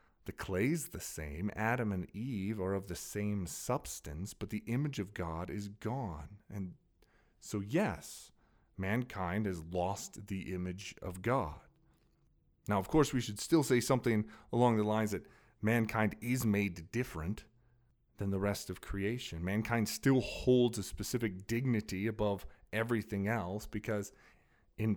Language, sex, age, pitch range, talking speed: English, male, 30-49, 100-120 Hz, 145 wpm